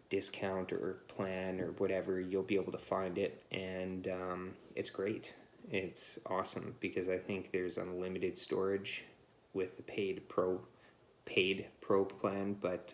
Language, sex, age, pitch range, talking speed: English, male, 20-39, 90-100 Hz, 145 wpm